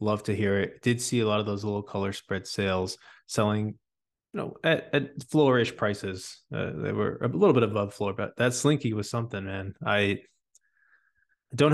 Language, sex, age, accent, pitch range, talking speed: English, male, 20-39, American, 105-120 Hz, 190 wpm